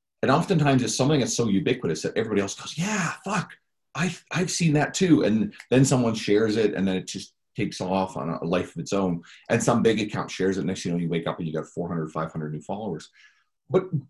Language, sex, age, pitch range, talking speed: English, male, 40-59, 90-130 Hz, 245 wpm